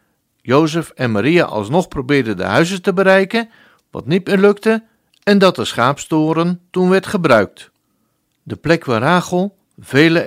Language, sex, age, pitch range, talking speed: Dutch, male, 60-79, 115-180 Hz, 145 wpm